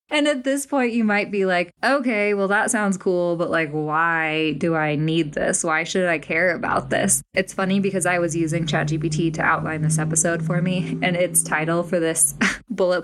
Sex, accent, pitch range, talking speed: female, American, 180-230 Hz, 205 wpm